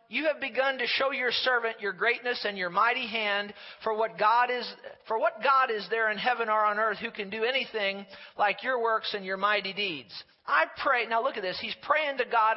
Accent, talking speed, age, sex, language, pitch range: American, 230 wpm, 40-59, male, English, 185-245 Hz